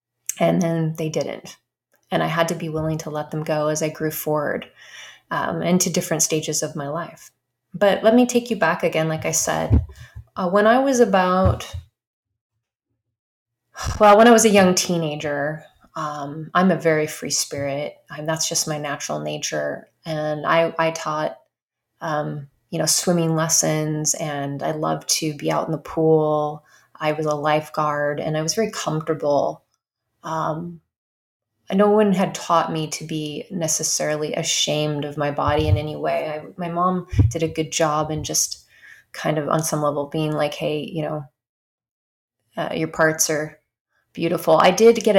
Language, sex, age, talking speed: English, female, 20-39, 170 wpm